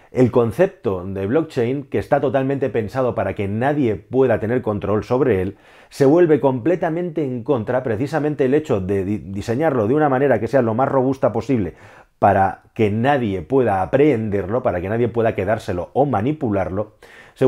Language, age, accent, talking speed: Spanish, 30-49, Spanish, 165 wpm